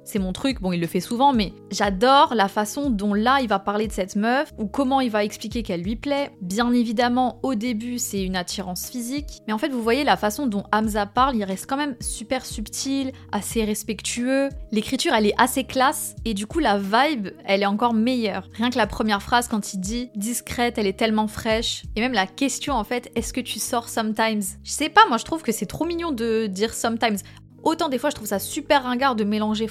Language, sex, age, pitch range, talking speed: French, female, 20-39, 210-260 Hz, 245 wpm